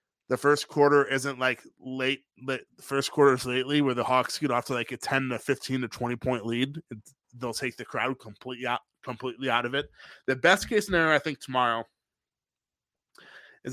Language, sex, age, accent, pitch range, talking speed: English, male, 20-39, American, 120-145 Hz, 200 wpm